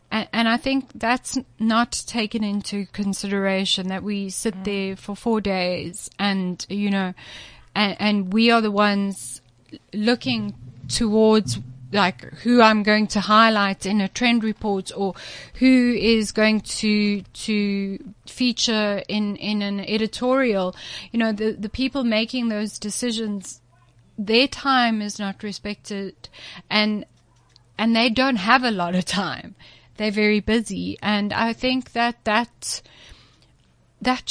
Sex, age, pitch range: female, 30-49, 195-230 Hz